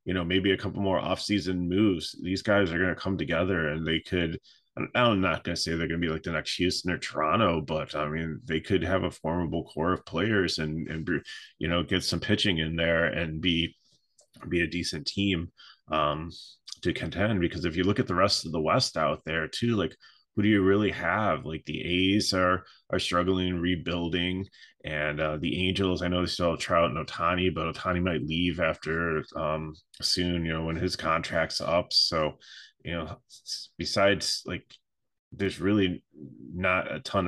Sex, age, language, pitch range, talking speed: male, 30-49, English, 80-95 Hz, 200 wpm